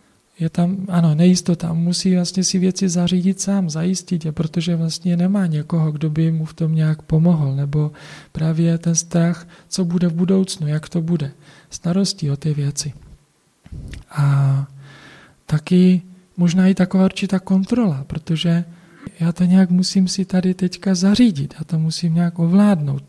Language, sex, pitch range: Czech, male, 155-180 Hz